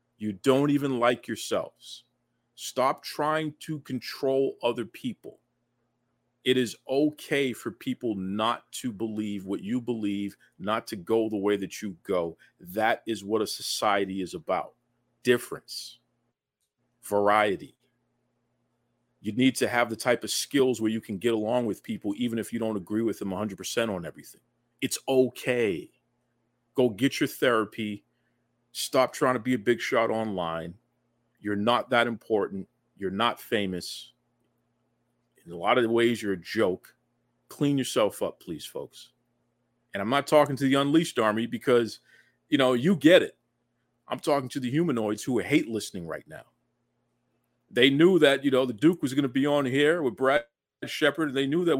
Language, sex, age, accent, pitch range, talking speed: English, male, 40-59, American, 105-135 Hz, 165 wpm